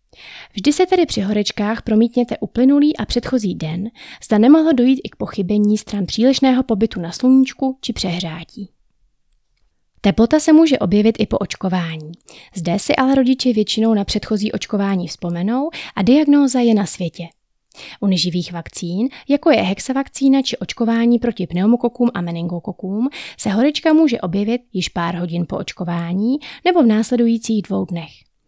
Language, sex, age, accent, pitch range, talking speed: Czech, female, 30-49, native, 185-250 Hz, 150 wpm